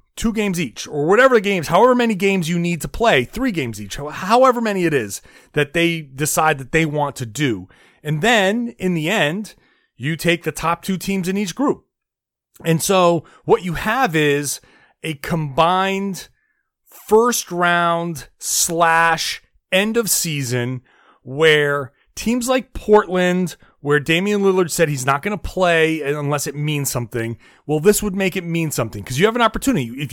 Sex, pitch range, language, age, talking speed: male, 150-195 Hz, English, 30-49, 165 wpm